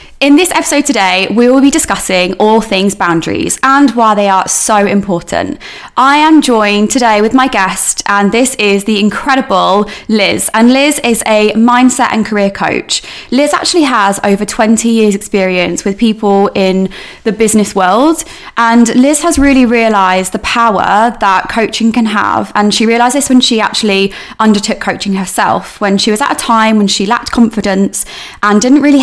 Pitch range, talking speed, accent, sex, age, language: 195-245 Hz, 175 wpm, British, female, 20-39, English